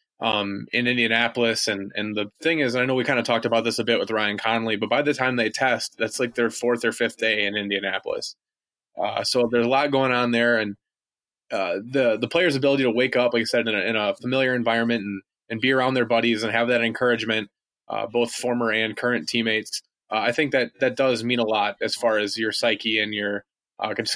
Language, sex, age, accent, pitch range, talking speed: English, male, 20-39, American, 115-145 Hz, 235 wpm